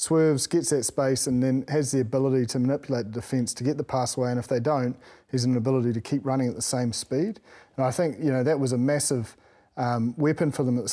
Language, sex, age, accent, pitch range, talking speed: English, male, 30-49, Australian, 125-150 Hz, 260 wpm